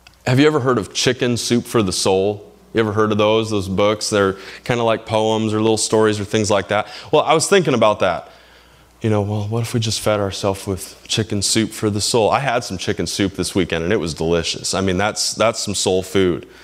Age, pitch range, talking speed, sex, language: 20-39, 105-125 Hz, 245 wpm, male, English